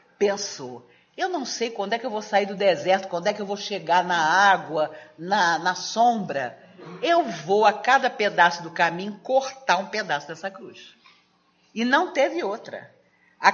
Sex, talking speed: female, 175 wpm